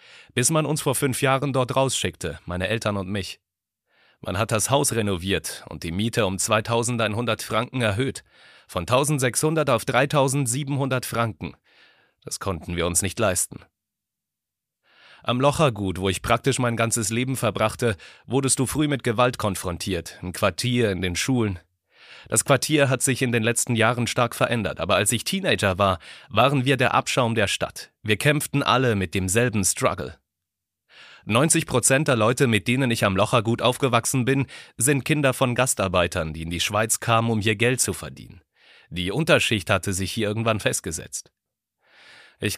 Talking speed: 160 wpm